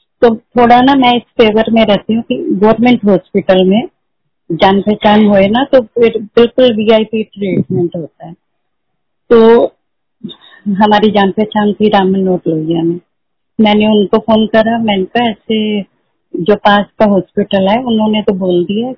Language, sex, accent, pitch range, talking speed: Hindi, female, native, 190-225 Hz, 150 wpm